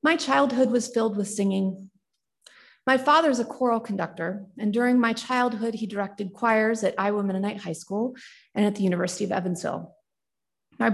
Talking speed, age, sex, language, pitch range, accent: 165 wpm, 30-49, female, English, 190-245 Hz, American